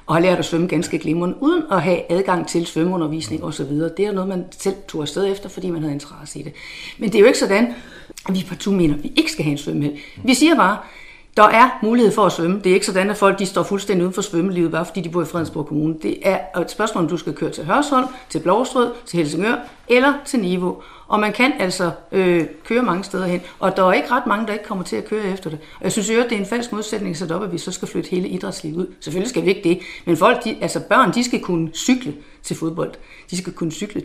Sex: female